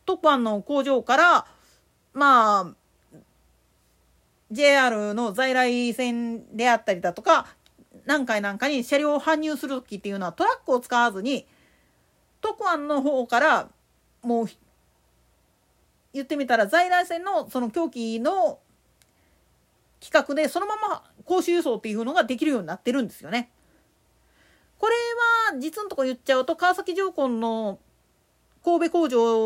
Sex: female